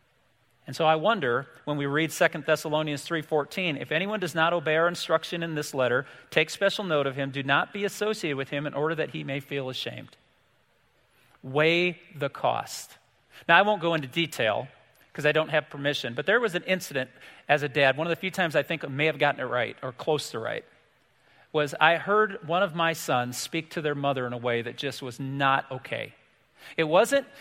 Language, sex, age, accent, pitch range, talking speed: English, male, 40-59, American, 140-175 Hz, 215 wpm